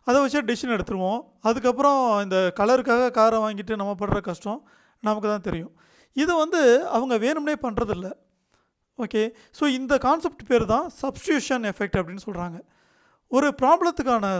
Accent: native